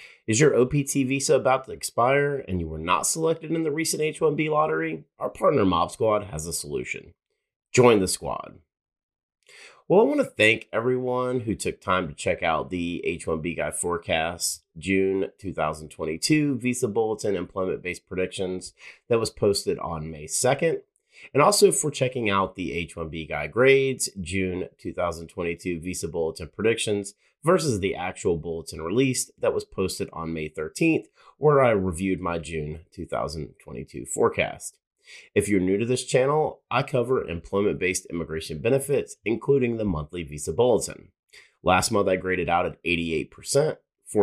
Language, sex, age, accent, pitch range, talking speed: English, male, 30-49, American, 85-125 Hz, 150 wpm